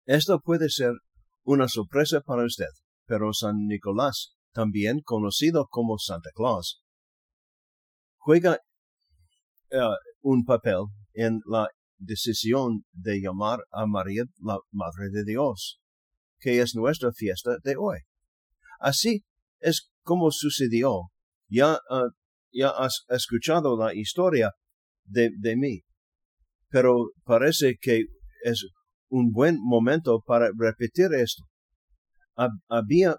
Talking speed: 110 wpm